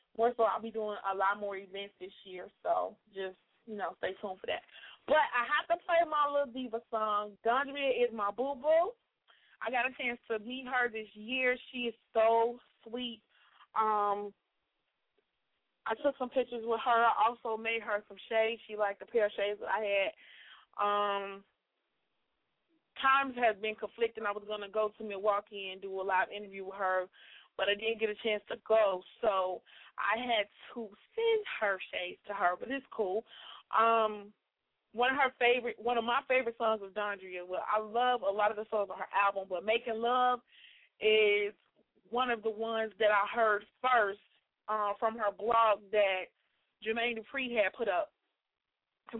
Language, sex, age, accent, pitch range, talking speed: English, female, 20-39, American, 205-245 Hz, 190 wpm